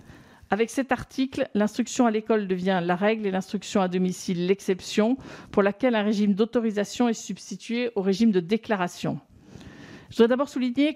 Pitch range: 190-230 Hz